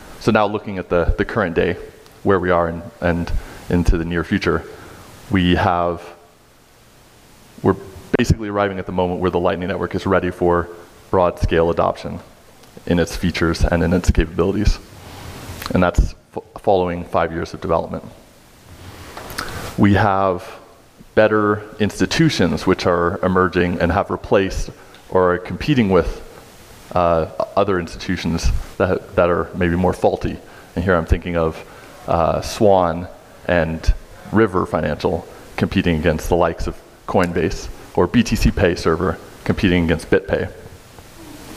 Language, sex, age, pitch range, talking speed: English, male, 20-39, 85-100 Hz, 135 wpm